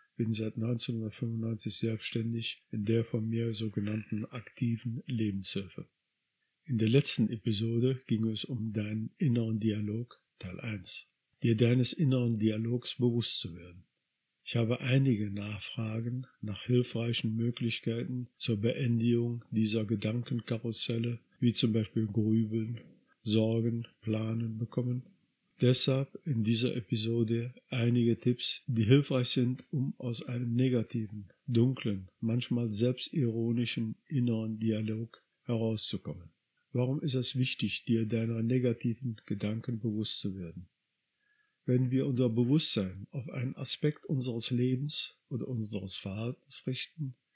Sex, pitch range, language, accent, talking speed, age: male, 110-125 Hz, German, German, 115 wpm, 50-69